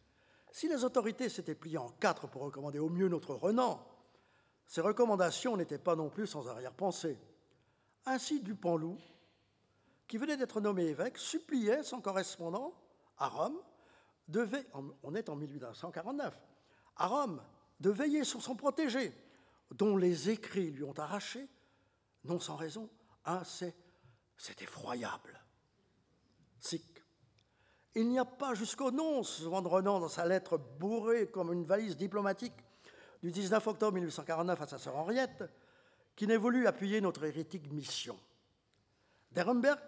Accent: French